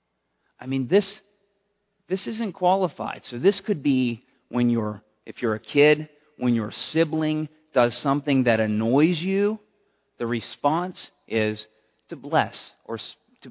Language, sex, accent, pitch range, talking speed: English, male, American, 110-155 Hz, 140 wpm